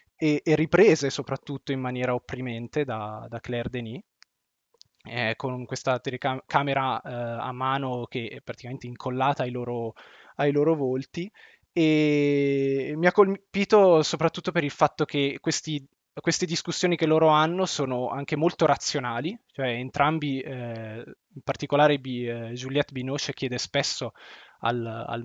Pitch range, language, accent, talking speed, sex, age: 125-150 Hz, Italian, native, 135 wpm, male, 20-39